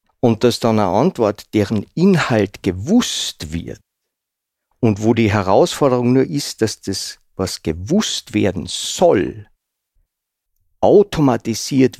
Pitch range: 95-135 Hz